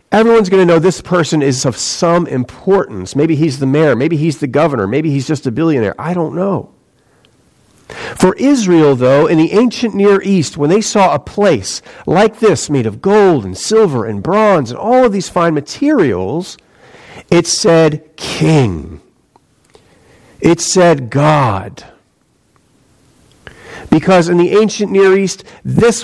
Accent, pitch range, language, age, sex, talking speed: American, 140-200 Hz, English, 50-69, male, 155 wpm